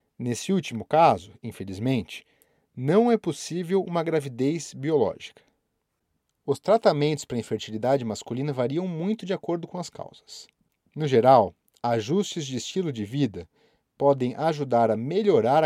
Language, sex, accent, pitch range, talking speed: Portuguese, male, Brazilian, 130-175 Hz, 125 wpm